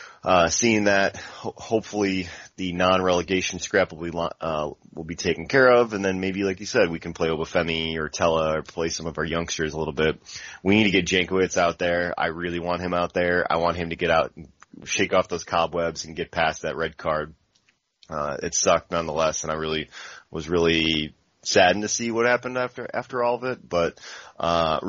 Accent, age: American, 30-49